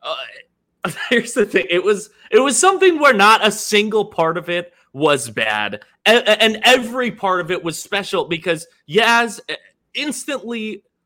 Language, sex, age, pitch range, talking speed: English, male, 20-39, 140-210 Hz, 155 wpm